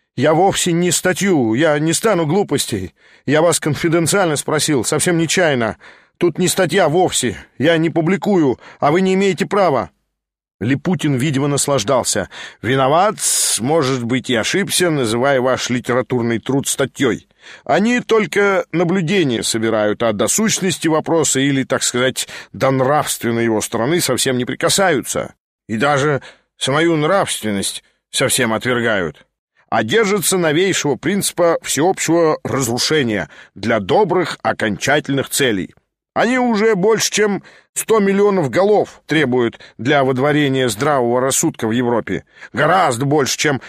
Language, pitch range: English, 125-175 Hz